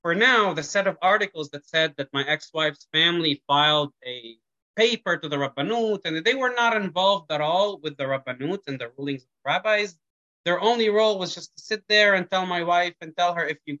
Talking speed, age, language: 225 wpm, 20-39, English